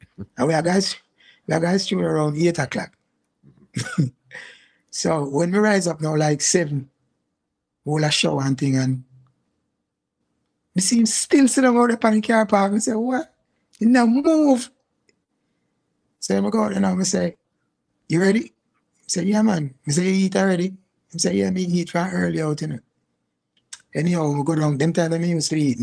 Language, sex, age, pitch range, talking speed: English, male, 60-79, 130-185 Hz, 185 wpm